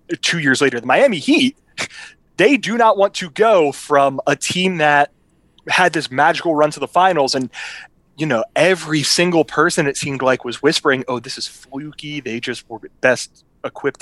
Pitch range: 130-180 Hz